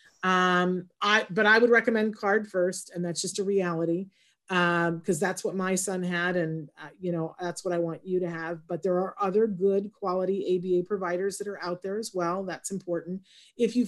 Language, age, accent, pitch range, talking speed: English, 40-59, American, 175-205 Hz, 210 wpm